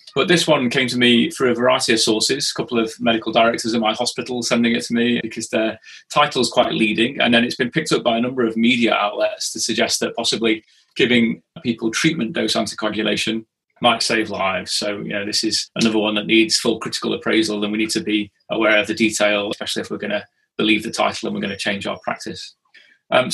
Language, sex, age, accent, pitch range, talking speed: English, male, 20-39, British, 110-125 Hz, 230 wpm